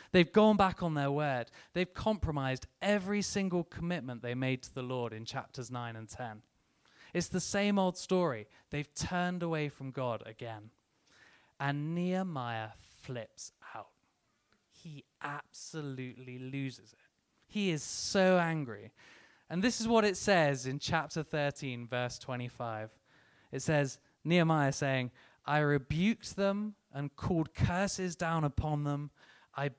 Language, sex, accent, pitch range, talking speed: English, male, British, 130-190 Hz, 140 wpm